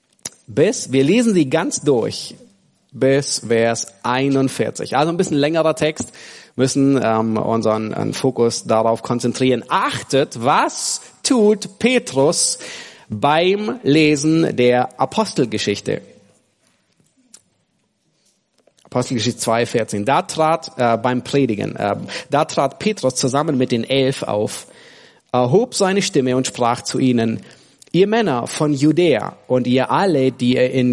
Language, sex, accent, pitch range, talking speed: German, male, German, 120-165 Hz, 120 wpm